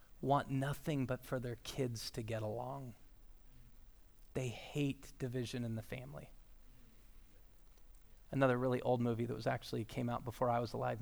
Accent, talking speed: American, 150 wpm